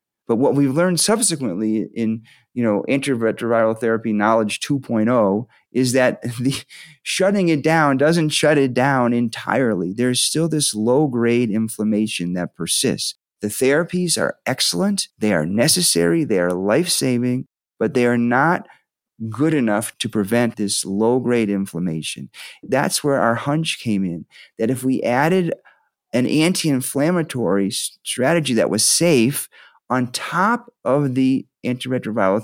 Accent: American